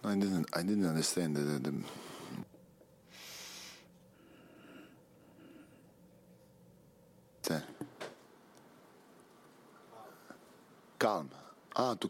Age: 50-69